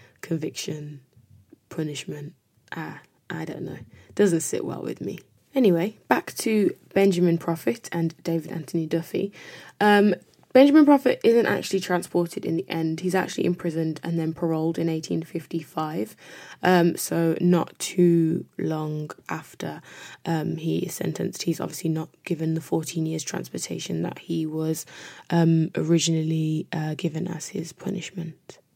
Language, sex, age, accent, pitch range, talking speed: English, female, 10-29, British, 165-185 Hz, 135 wpm